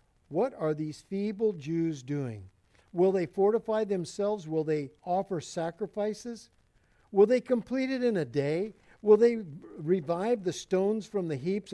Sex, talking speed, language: male, 150 wpm, English